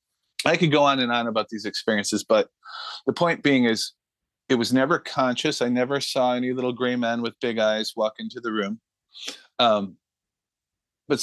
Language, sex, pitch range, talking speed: English, male, 115-145 Hz, 180 wpm